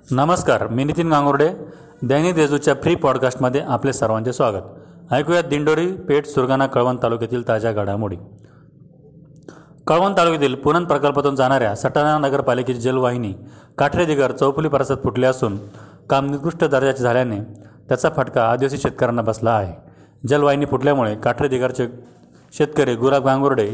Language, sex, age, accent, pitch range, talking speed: Marathi, male, 30-49, native, 115-145 Hz, 120 wpm